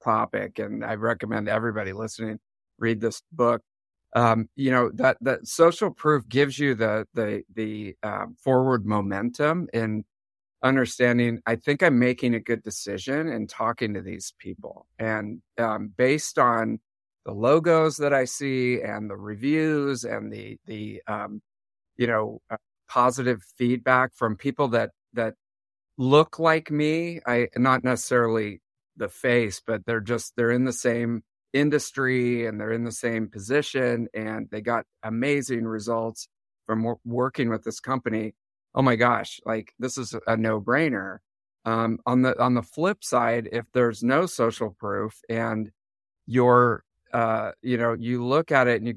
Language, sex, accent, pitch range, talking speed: English, male, American, 110-130 Hz, 155 wpm